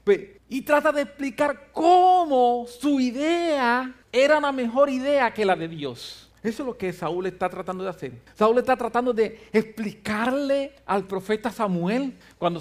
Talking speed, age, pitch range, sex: 155 wpm, 50-69, 175-285 Hz, male